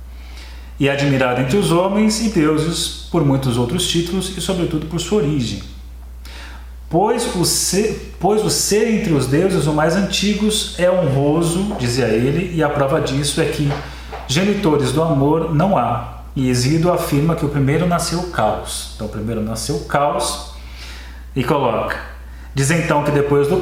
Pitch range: 115-165 Hz